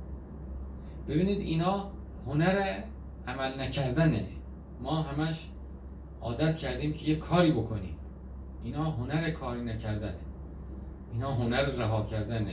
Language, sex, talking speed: Persian, male, 100 wpm